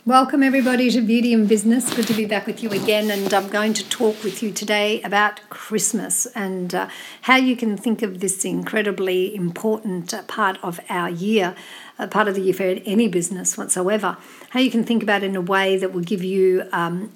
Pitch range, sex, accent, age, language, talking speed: 185-230 Hz, female, Australian, 60-79, English, 215 wpm